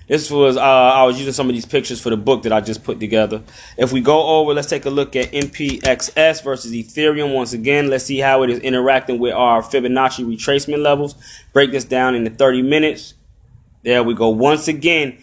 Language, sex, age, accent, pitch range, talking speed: English, male, 20-39, American, 130-155 Hz, 215 wpm